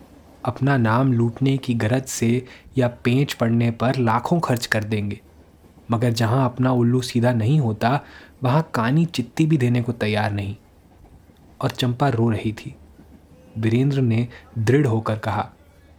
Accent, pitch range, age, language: native, 105-130 Hz, 20-39, Hindi